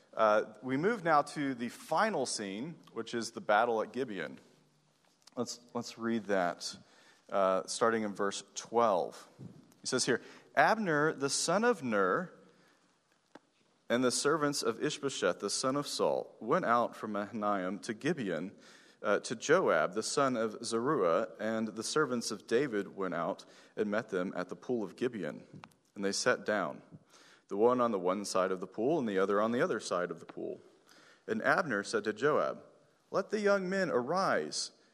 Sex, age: male, 40-59